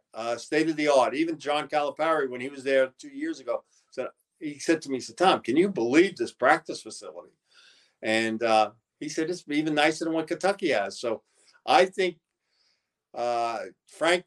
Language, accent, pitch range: English, American, 125-160 Hz